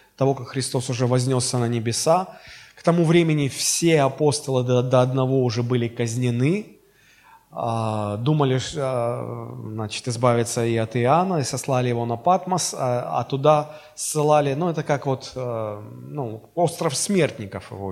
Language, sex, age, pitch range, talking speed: Russian, male, 20-39, 120-160 Hz, 130 wpm